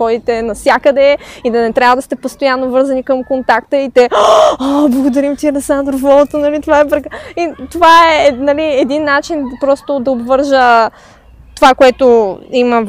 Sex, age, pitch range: female, 20-39, 240-290 Hz